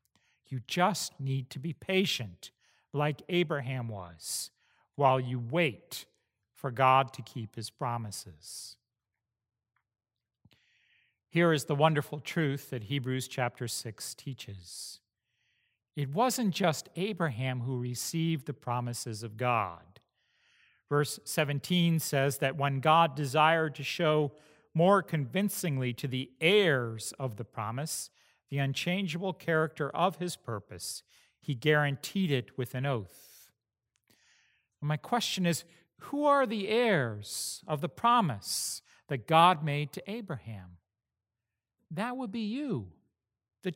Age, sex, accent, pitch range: 50-69, male, American, 120-175 Hz